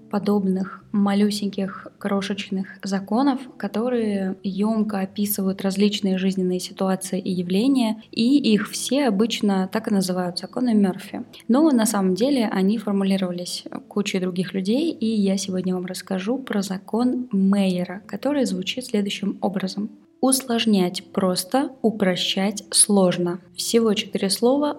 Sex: female